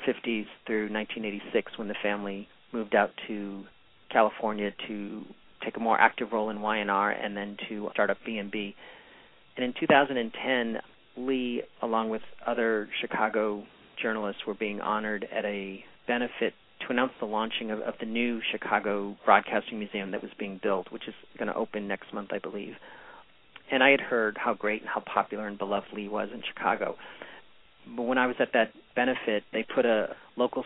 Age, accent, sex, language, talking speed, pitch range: 40-59, American, male, English, 175 wpm, 100-115 Hz